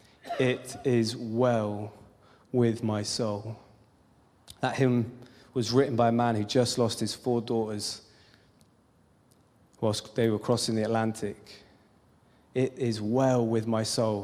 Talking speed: 130 wpm